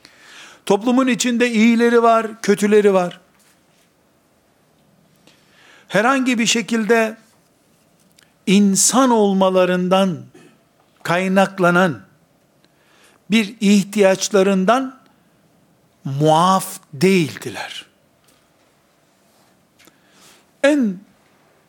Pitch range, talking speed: 185-220 Hz, 45 wpm